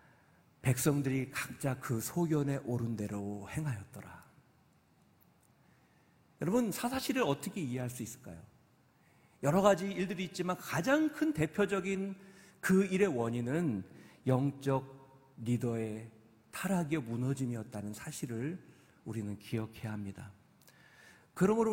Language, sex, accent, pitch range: Korean, male, native, 130-185 Hz